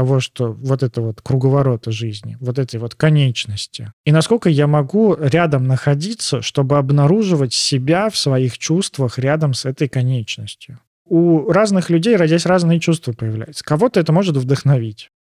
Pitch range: 125-165 Hz